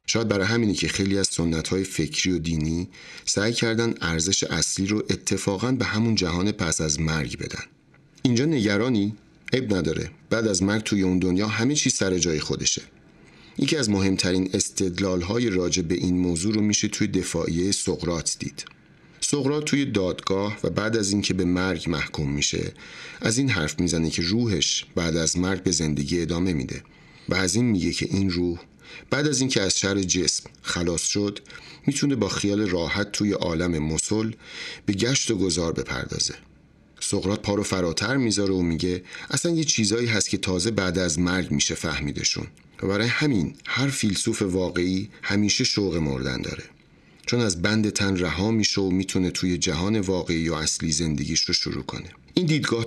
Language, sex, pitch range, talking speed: Persian, male, 85-110 Hz, 170 wpm